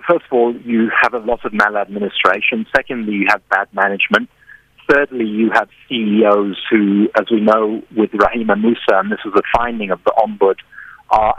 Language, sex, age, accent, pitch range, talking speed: English, male, 40-59, British, 110-130 Hz, 180 wpm